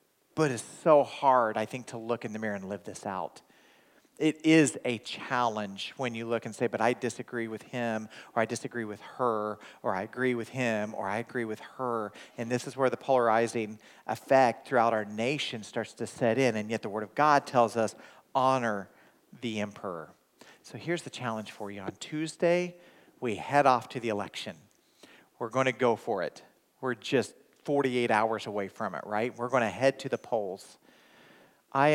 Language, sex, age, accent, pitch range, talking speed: English, male, 40-59, American, 110-135 Hz, 195 wpm